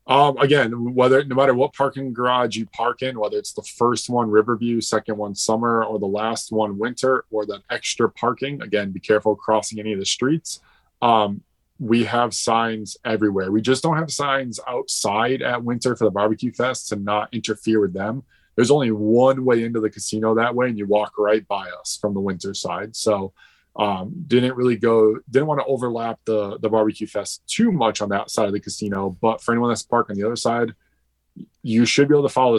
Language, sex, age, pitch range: English, male, 20-39, 110-130 Hz